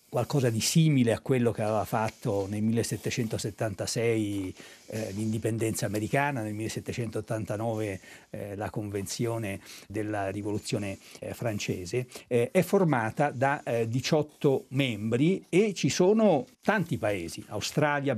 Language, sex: Italian, male